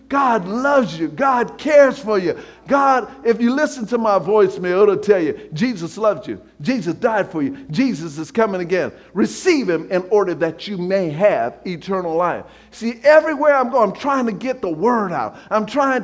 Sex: male